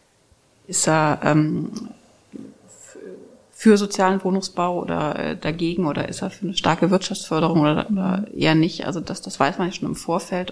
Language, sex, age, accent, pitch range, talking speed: German, female, 30-49, German, 165-195 Hz, 165 wpm